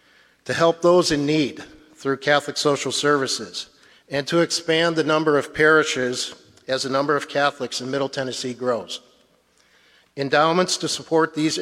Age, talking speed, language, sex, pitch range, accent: 50-69, 150 wpm, English, male, 135-155 Hz, American